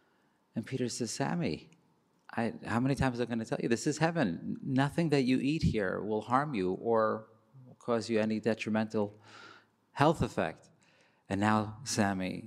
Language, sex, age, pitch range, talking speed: English, male, 30-49, 105-125 Hz, 175 wpm